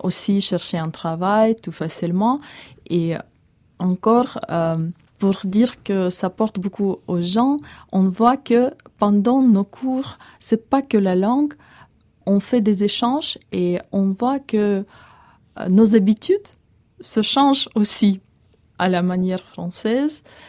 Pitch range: 185-235 Hz